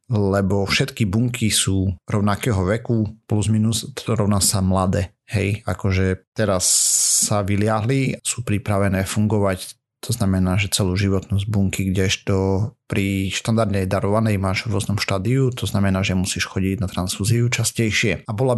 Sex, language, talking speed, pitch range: male, Slovak, 140 wpm, 100-115 Hz